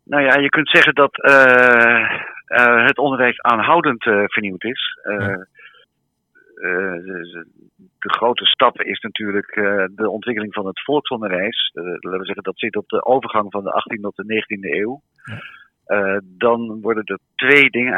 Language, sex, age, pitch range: Dutch, male, 50-69, 105-130 Hz